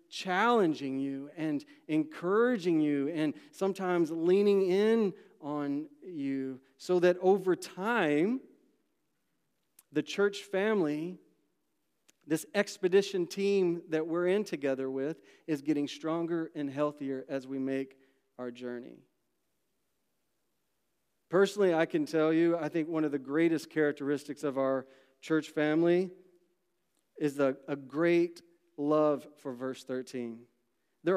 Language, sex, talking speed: English, male, 115 wpm